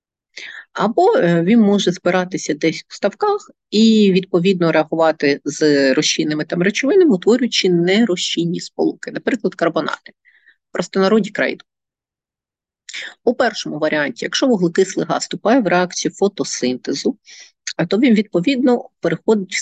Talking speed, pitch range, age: 115 wpm, 160-210 Hz, 30-49